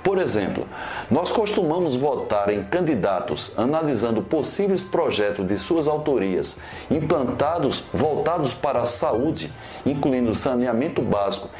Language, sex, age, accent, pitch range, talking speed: Portuguese, male, 60-79, Brazilian, 115-165 Hz, 110 wpm